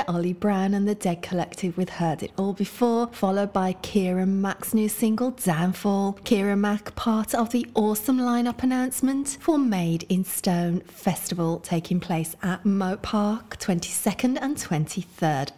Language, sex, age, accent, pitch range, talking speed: English, female, 30-49, British, 175-225 Hz, 150 wpm